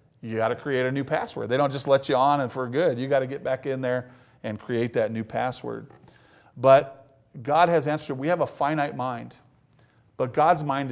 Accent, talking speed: American, 220 wpm